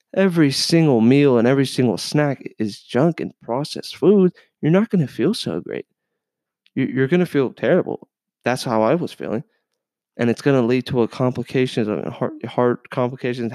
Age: 20-39